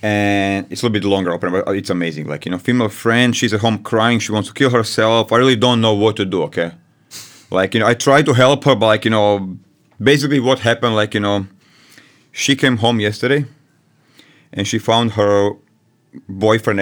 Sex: male